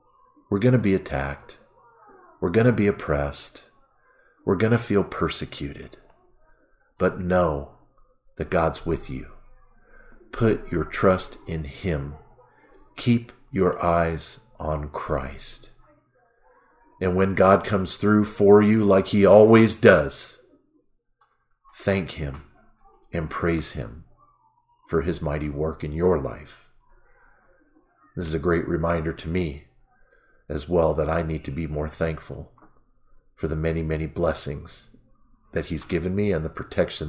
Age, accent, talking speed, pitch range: 50-69, American, 135 wpm, 80-110 Hz